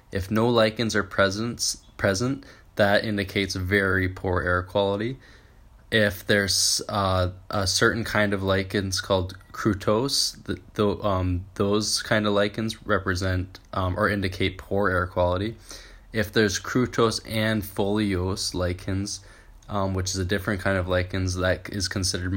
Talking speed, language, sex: 140 wpm, English, male